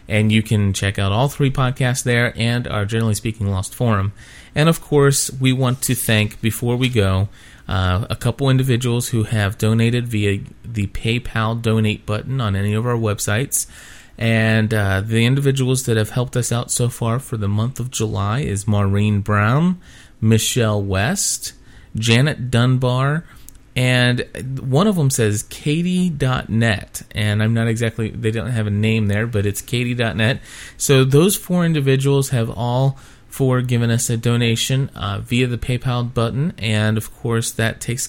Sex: male